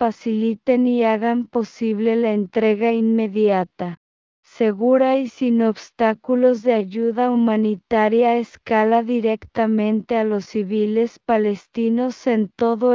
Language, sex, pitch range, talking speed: English, female, 210-235 Hz, 100 wpm